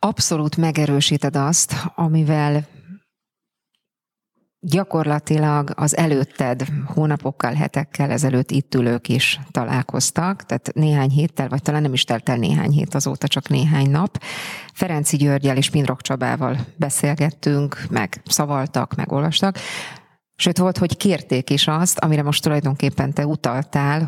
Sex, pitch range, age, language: female, 140-160 Hz, 30-49, Hungarian